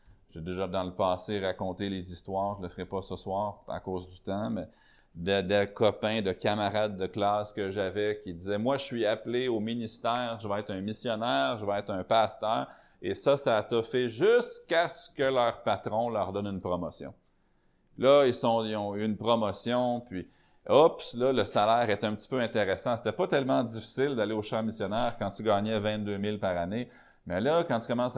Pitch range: 95-115 Hz